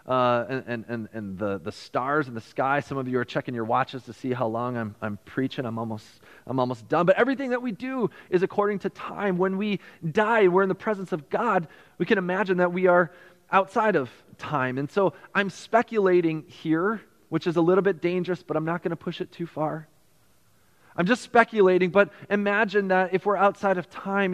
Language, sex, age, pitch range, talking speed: English, male, 30-49, 150-200 Hz, 215 wpm